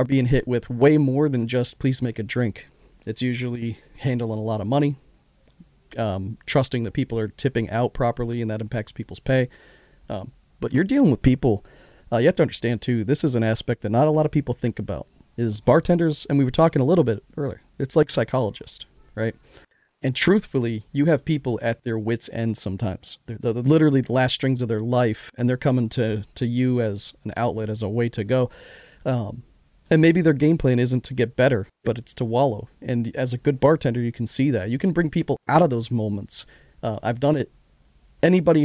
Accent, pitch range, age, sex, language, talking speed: American, 110-135 Hz, 40-59, male, English, 215 wpm